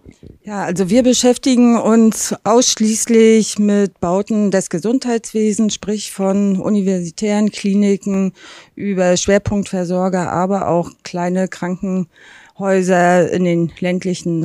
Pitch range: 175-210 Hz